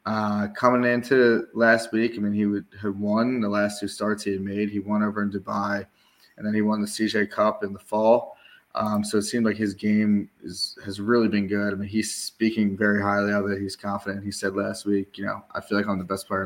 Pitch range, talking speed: 105-110 Hz, 250 wpm